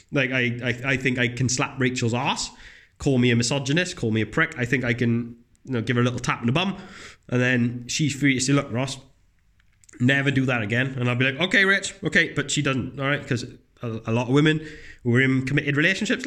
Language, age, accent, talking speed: English, 20-39, British, 245 wpm